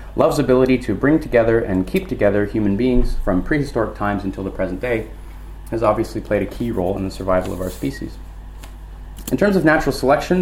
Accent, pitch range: American, 95-125 Hz